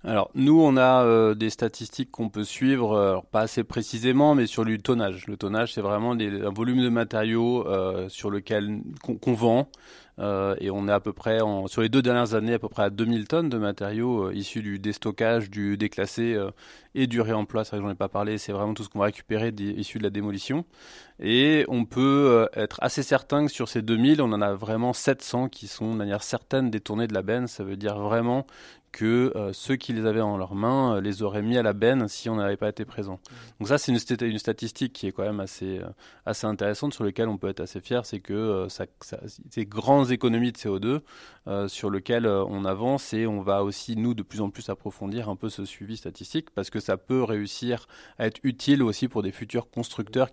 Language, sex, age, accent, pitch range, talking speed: French, male, 20-39, French, 100-120 Hz, 230 wpm